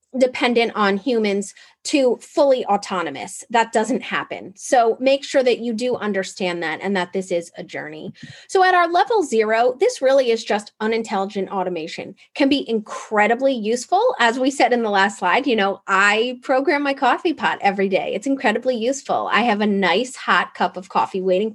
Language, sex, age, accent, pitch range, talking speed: English, female, 20-39, American, 195-265 Hz, 185 wpm